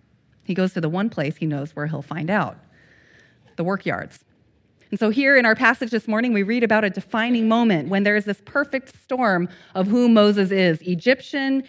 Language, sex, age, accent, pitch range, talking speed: English, female, 30-49, American, 185-230 Hz, 200 wpm